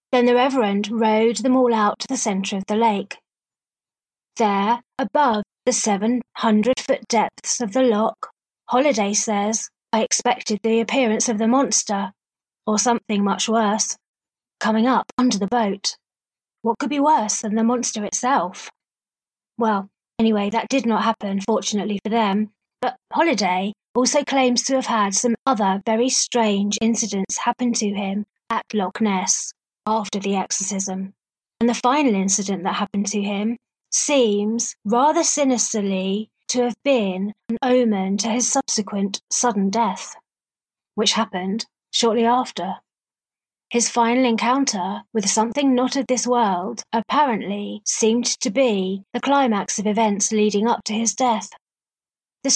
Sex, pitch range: female, 205-245 Hz